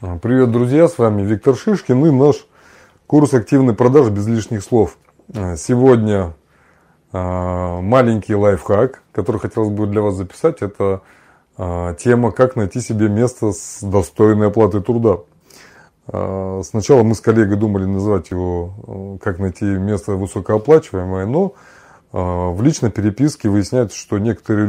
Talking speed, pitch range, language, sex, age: 125 wpm, 95-120 Hz, Russian, male, 20-39